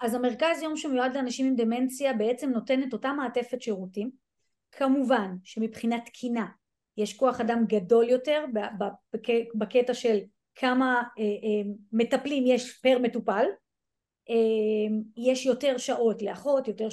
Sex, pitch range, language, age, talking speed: female, 220-260 Hz, Hebrew, 30-49, 115 wpm